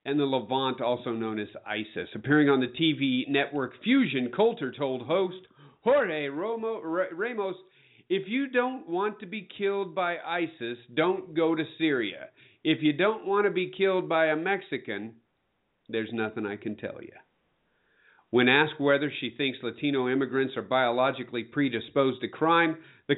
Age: 50-69